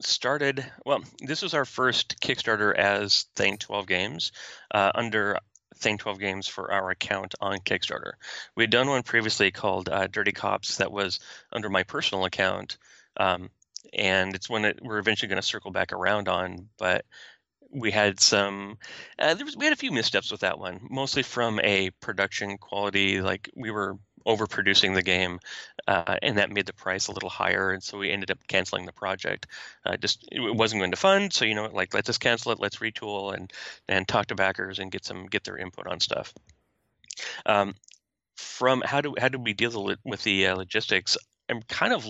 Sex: male